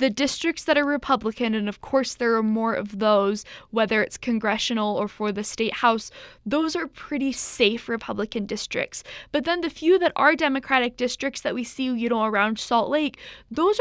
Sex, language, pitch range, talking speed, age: female, English, 220-285 Hz, 190 wpm, 10-29